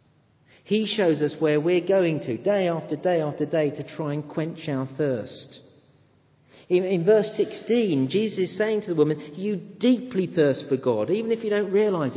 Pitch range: 135-195 Hz